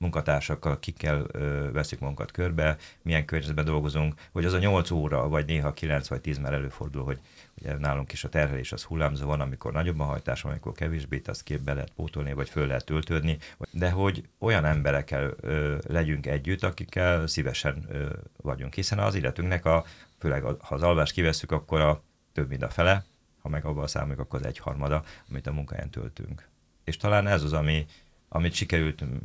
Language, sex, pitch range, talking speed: Hungarian, male, 75-85 Hz, 185 wpm